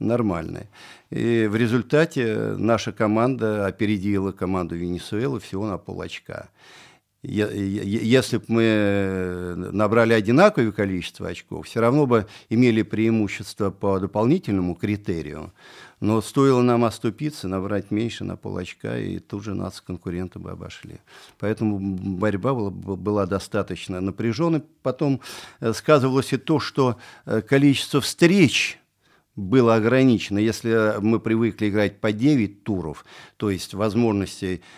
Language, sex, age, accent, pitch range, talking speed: Russian, male, 50-69, native, 95-120 Hz, 125 wpm